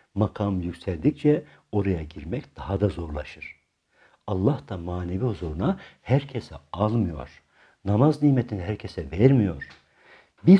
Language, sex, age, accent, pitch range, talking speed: Turkish, male, 60-79, native, 85-125 Hz, 100 wpm